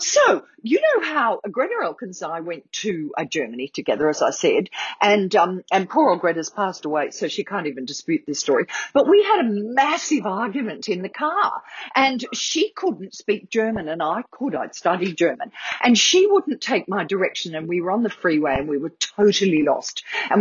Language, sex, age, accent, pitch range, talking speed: English, female, 50-69, Australian, 160-250 Hz, 200 wpm